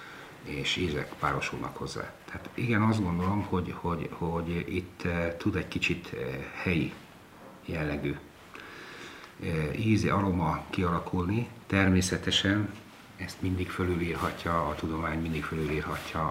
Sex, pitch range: male, 85-110 Hz